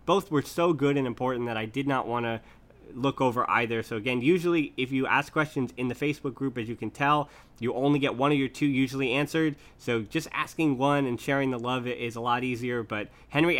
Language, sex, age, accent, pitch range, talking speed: English, male, 20-39, American, 120-145 Hz, 235 wpm